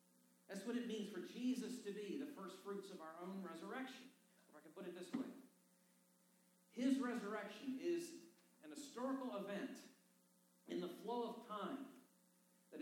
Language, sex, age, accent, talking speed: English, male, 50-69, American, 160 wpm